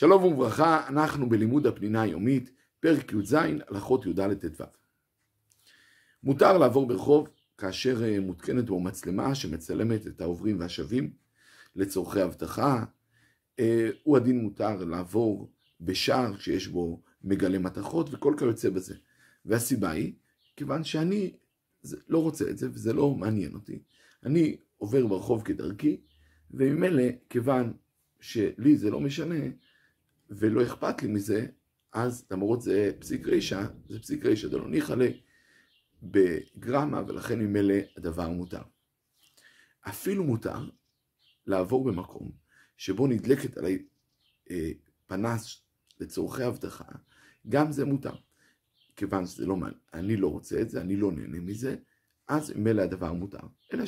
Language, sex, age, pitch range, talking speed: Hebrew, male, 50-69, 95-140 Hz, 120 wpm